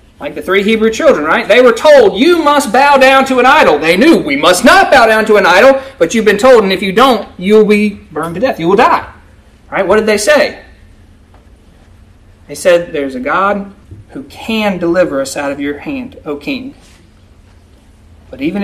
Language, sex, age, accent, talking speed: English, male, 30-49, American, 205 wpm